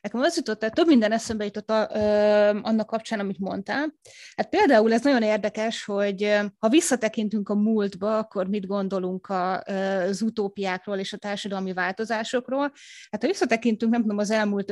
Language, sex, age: Hungarian, female, 20-39